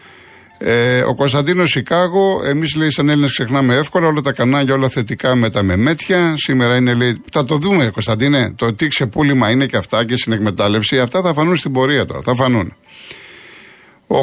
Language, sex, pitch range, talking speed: Greek, male, 115-145 Hz, 185 wpm